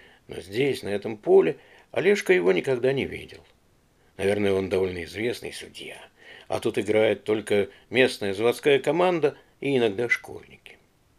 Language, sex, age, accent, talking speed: Russian, male, 50-69, native, 135 wpm